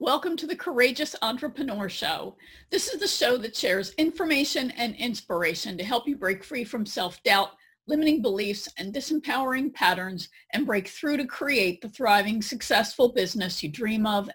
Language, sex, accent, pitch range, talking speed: English, female, American, 210-295 Hz, 165 wpm